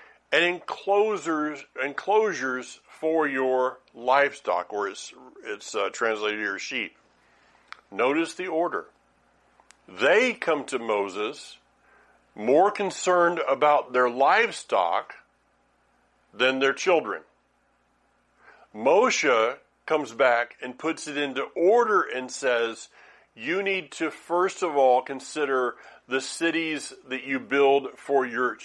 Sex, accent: male, American